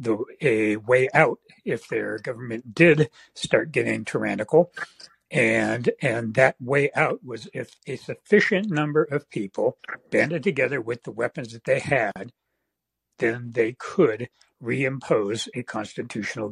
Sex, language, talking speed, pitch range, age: male, English, 135 wpm, 125-165 Hz, 60-79